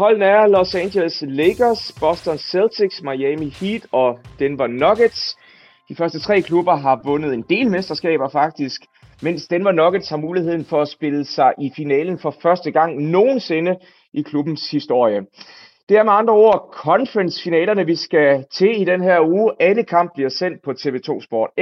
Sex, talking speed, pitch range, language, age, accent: male, 165 wpm, 145-200 Hz, Danish, 30-49, native